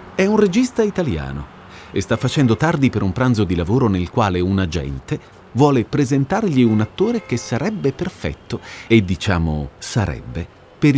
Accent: native